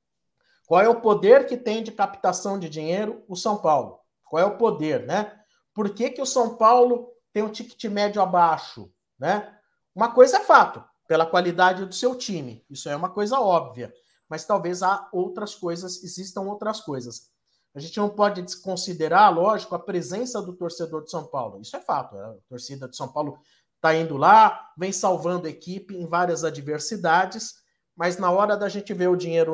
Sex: male